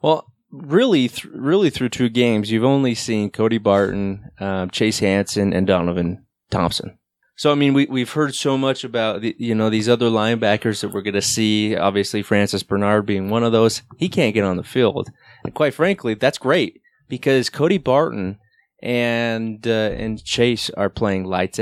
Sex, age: male, 20-39